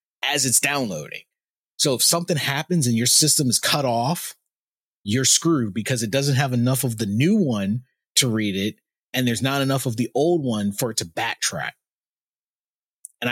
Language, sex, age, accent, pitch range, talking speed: English, male, 30-49, American, 115-145 Hz, 180 wpm